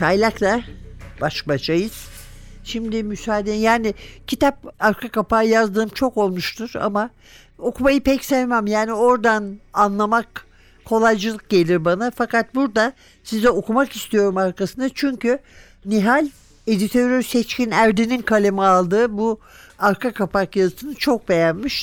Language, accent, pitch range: Turkish, native, 185-240 Hz